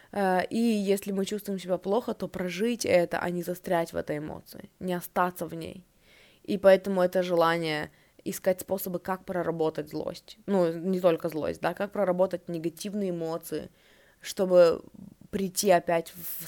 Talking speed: 150 wpm